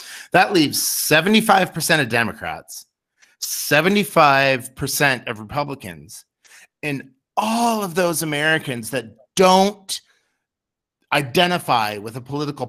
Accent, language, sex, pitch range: American, English, male, 120-165 Hz